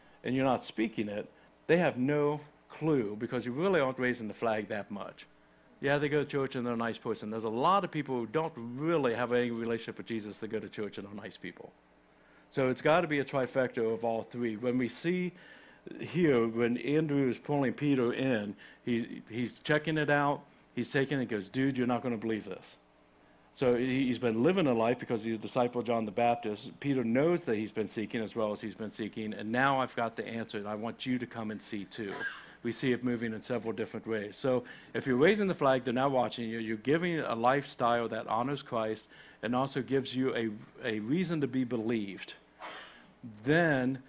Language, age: English, 60-79